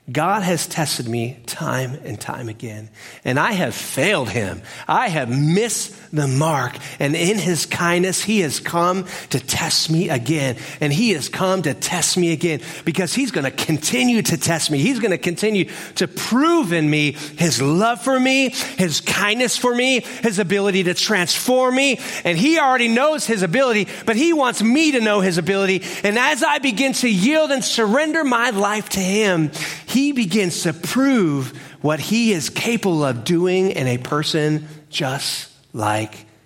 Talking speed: 175 wpm